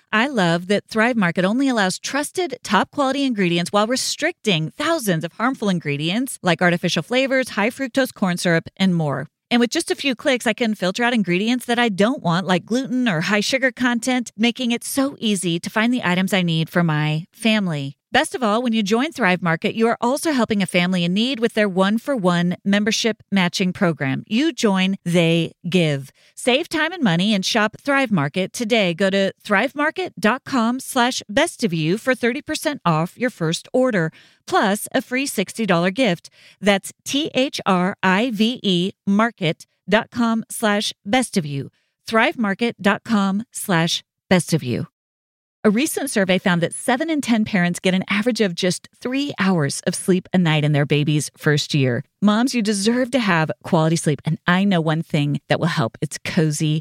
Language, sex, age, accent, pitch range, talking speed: English, female, 30-49, American, 170-240 Hz, 175 wpm